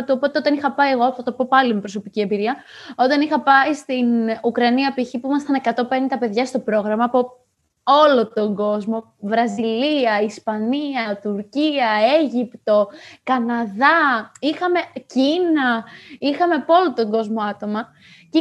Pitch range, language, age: 230-300 Hz, Greek, 20-39